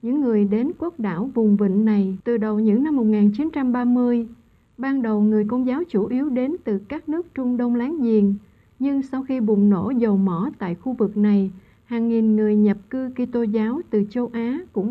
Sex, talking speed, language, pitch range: female, 220 wpm, Vietnamese, 215-260 Hz